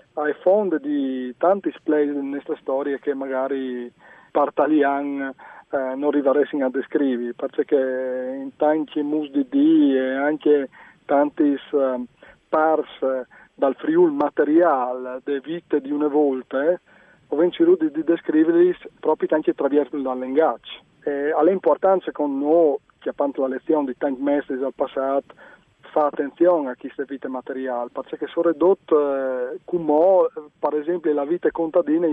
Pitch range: 135-170 Hz